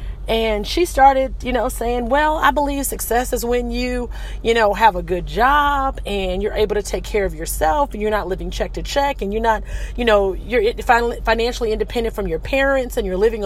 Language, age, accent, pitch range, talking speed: English, 40-59, American, 200-255 Hz, 215 wpm